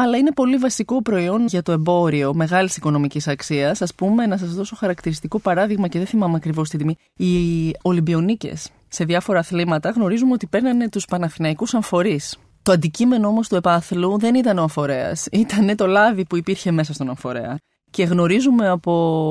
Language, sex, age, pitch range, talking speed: Greek, female, 20-39, 160-210 Hz, 170 wpm